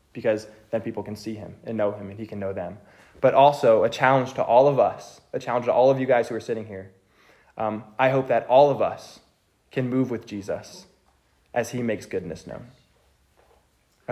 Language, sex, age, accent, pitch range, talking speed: English, male, 20-39, American, 105-135 Hz, 215 wpm